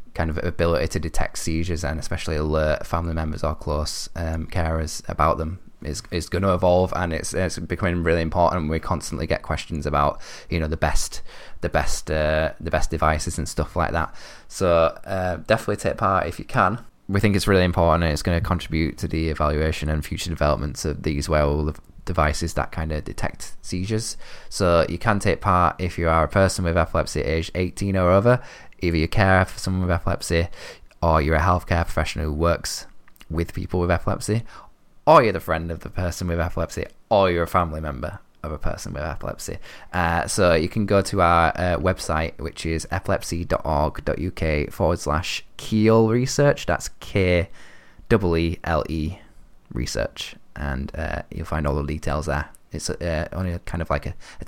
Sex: male